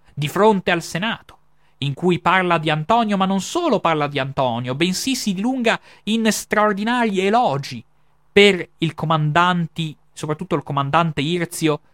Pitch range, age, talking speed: 140-190 Hz, 30-49, 140 wpm